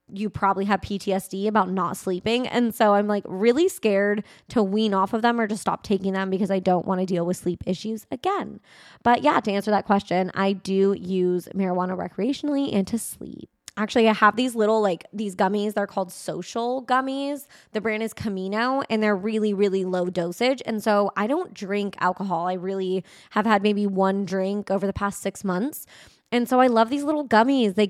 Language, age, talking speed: English, 20-39, 205 wpm